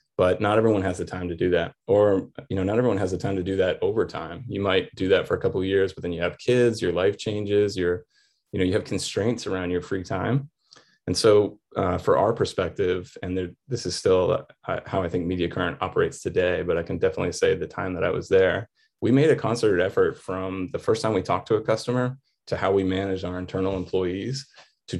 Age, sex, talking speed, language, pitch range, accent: 20-39, male, 240 wpm, English, 90-115 Hz, American